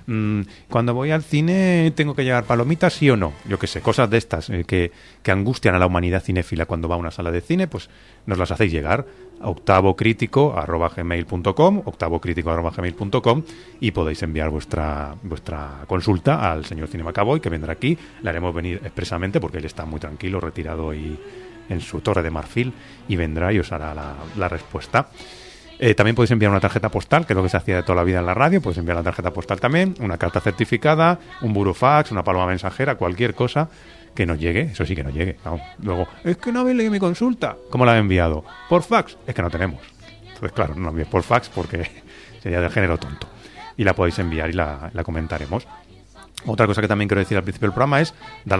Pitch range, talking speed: 85-120 Hz, 215 wpm